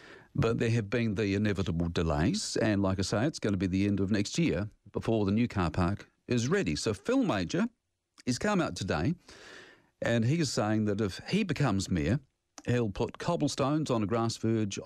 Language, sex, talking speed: English, male, 200 wpm